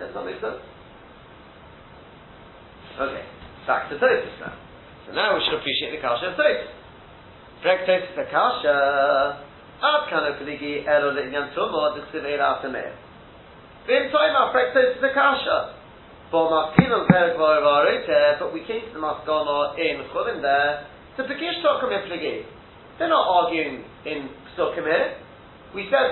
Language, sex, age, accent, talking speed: English, male, 30-49, British, 140 wpm